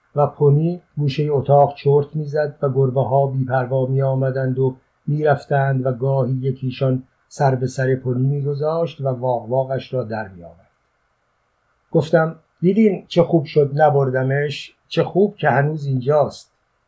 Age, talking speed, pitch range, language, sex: 50-69, 140 wpm, 130-165 Hz, Persian, male